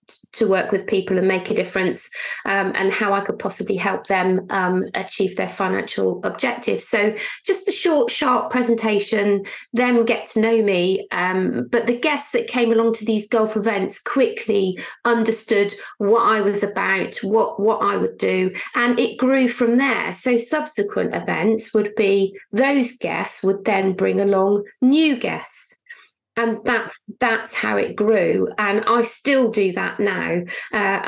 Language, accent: English, British